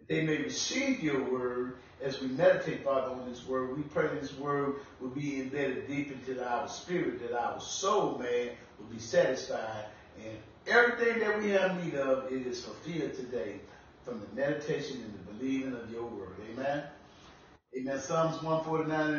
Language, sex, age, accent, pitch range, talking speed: English, female, 30-49, American, 130-175 Hz, 170 wpm